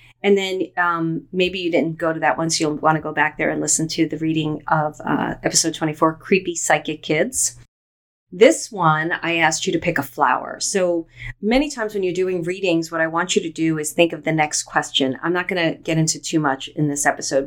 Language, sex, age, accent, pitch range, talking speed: English, female, 40-59, American, 145-180 Hz, 235 wpm